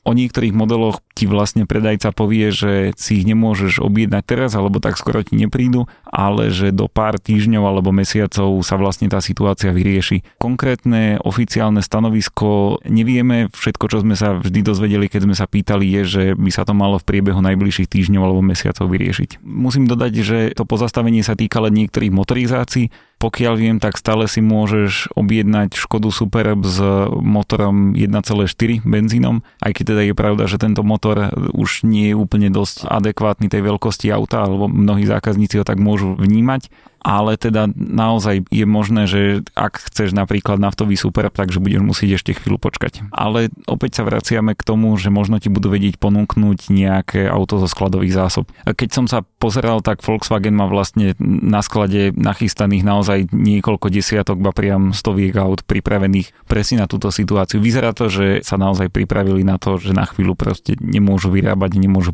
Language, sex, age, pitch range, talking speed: Slovak, male, 30-49, 100-110 Hz, 170 wpm